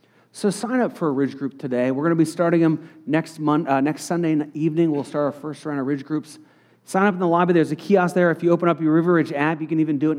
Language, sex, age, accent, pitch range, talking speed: English, male, 40-59, American, 145-200 Hz, 295 wpm